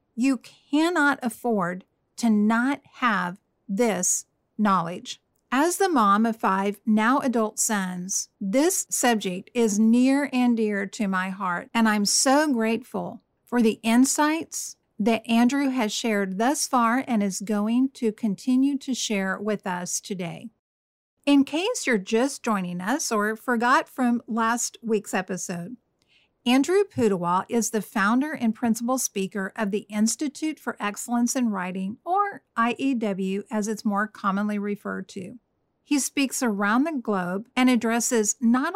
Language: English